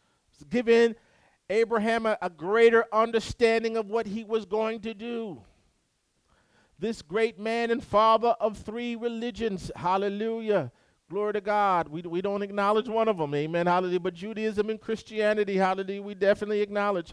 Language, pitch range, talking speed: English, 165-225 Hz, 145 wpm